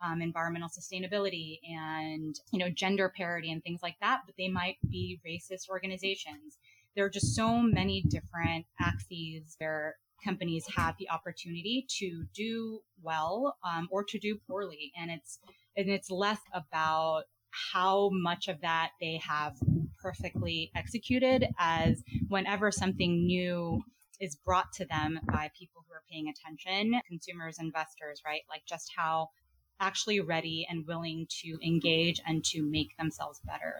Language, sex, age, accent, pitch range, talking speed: English, female, 20-39, American, 155-190 Hz, 145 wpm